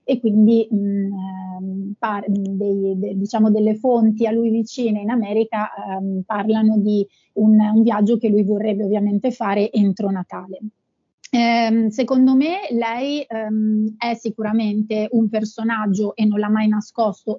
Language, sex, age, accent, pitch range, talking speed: Italian, female, 30-49, native, 200-225 Hz, 140 wpm